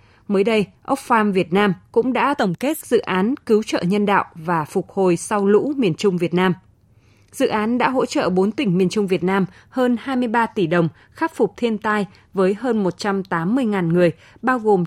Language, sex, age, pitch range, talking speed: Vietnamese, female, 20-39, 180-235 Hz, 200 wpm